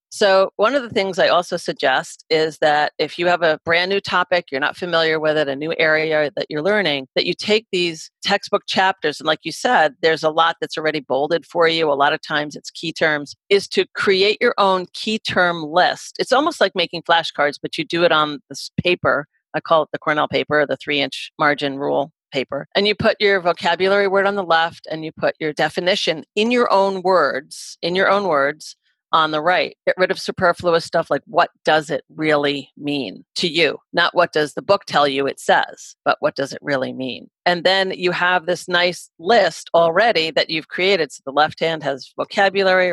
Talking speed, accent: 215 wpm, American